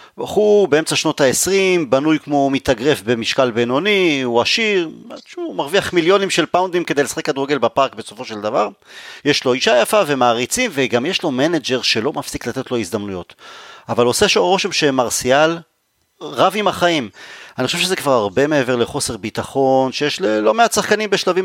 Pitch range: 125-185 Hz